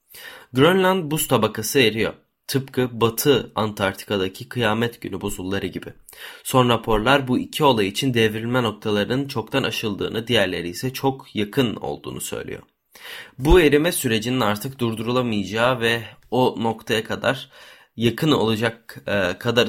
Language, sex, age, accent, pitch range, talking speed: Turkish, male, 20-39, native, 105-125 Hz, 120 wpm